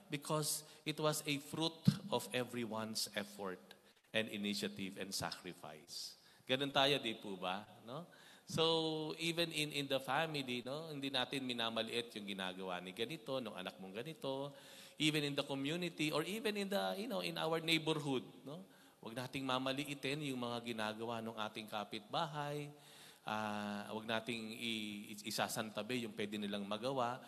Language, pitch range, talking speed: Filipino, 120-160 Hz, 150 wpm